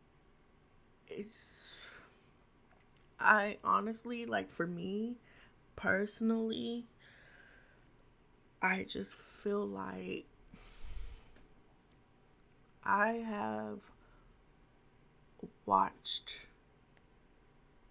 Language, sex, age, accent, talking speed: English, female, 20-39, American, 45 wpm